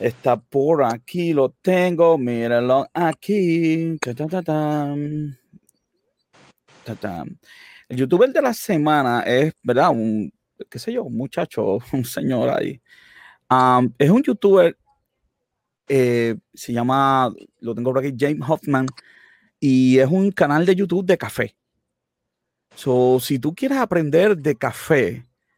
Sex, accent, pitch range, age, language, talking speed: male, Venezuelan, 130-160 Hz, 30-49, Spanish, 135 wpm